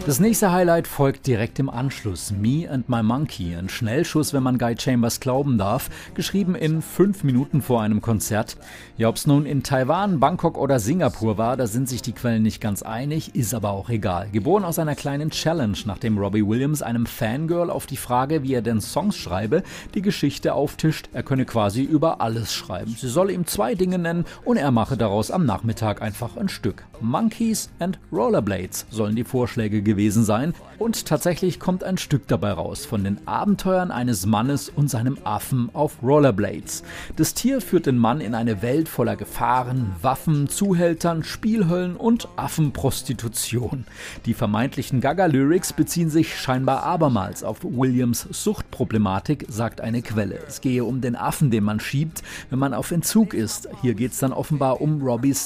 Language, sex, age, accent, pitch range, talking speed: German, male, 40-59, German, 115-155 Hz, 175 wpm